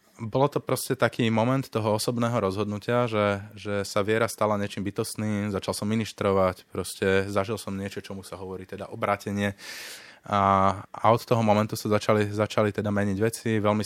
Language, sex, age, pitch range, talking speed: Slovak, male, 20-39, 95-110 Hz, 165 wpm